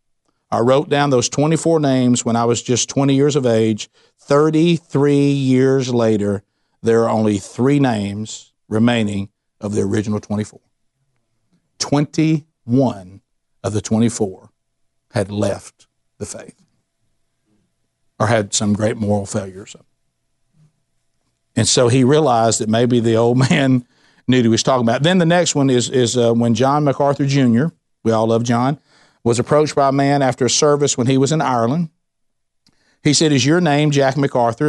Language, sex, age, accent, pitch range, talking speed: English, male, 60-79, American, 115-150 Hz, 155 wpm